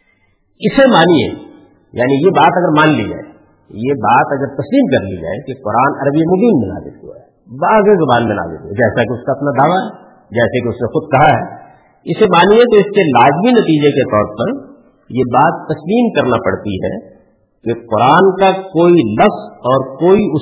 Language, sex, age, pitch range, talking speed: Urdu, female, 50-69, 105-170 Hz, 190 wpm